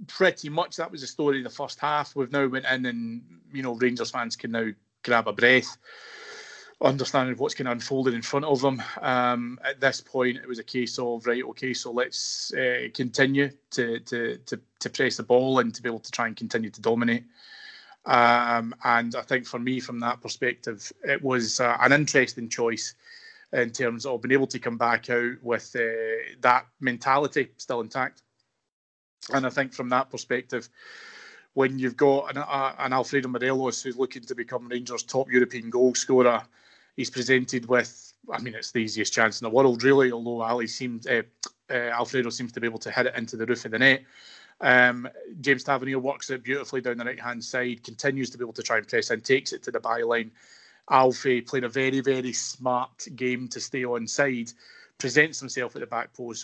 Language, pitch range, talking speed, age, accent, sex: English, 120-135 Hz, 200 wpm, 30-49, British, male